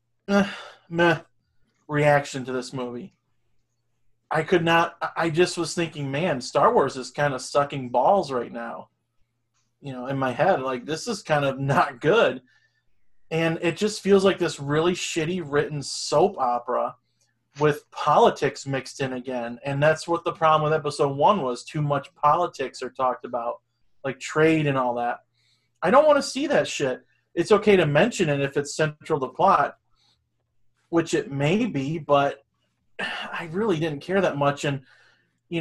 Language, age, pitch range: English, 30-49, 125-165 Hz